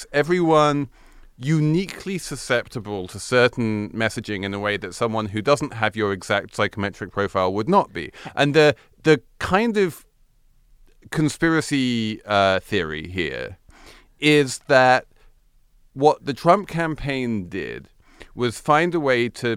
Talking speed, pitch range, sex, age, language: 130 wpm, 105-145 Hz, male, 40-59, English